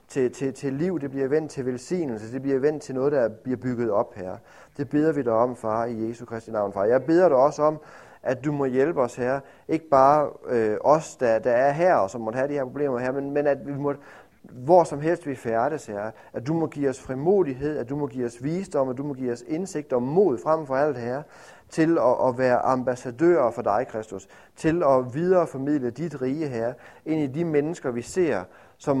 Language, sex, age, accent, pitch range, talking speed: Danish, male, 30-49, native, 120-150 Hz, 235 wpm